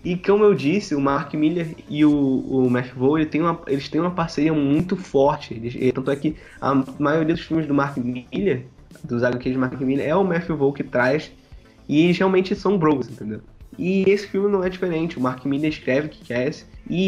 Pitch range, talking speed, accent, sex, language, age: 125-160 Hz, 210 wpm, Brazilian, male, Portuguese, 20-39